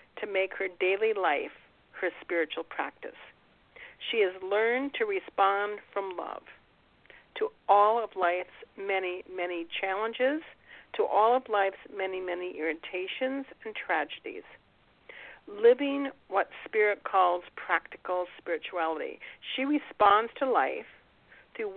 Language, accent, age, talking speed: English, American, 50-69, 115 wpm